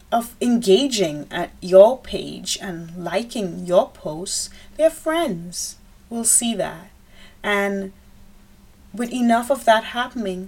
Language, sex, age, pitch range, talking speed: English, female, 30-49, 190-240 Hz, 115 wpm